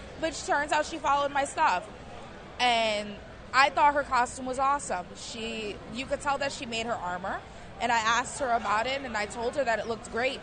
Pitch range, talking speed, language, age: 215-265 Hz, 215 wpm, English, 20-39